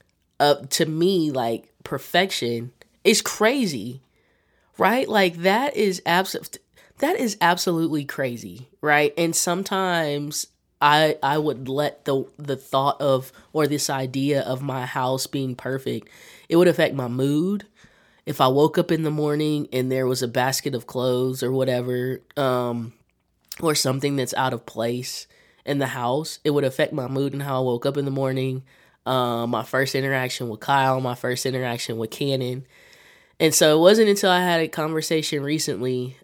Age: 20-39